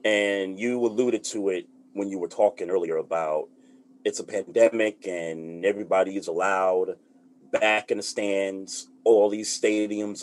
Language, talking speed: English, 145 wpm